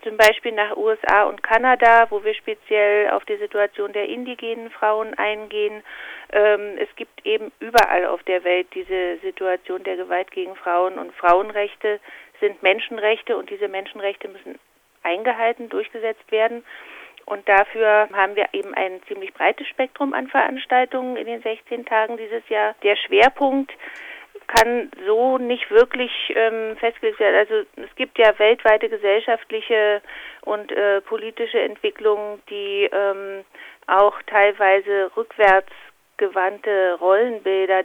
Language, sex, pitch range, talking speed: German, female, 195-250 Hz, 130 wpm